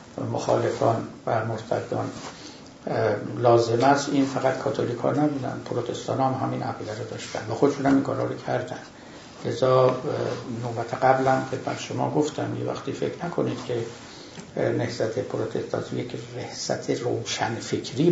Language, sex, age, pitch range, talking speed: Persian, male, 60-79, 120-145 Hz, 125 wpm